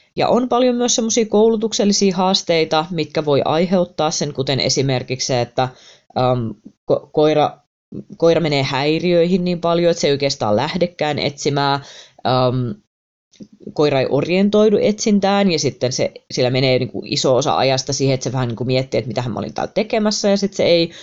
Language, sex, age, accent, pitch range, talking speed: Finnish, female, 20-39, native, 135-190 Hz, 170 wpm